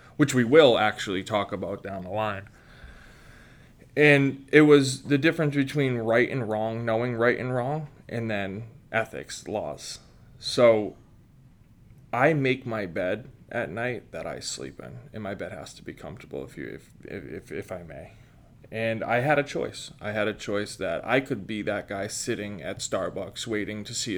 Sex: male